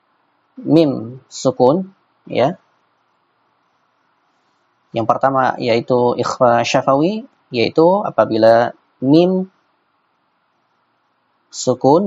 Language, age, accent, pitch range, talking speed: Indonesian, 20-39, native, 125-170 Hz, 60 wpm